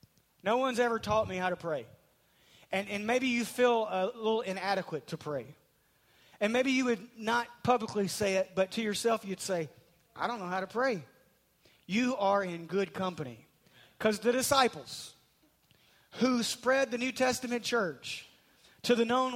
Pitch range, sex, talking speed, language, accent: 175-235 Hz, male, 165 wpm, English, American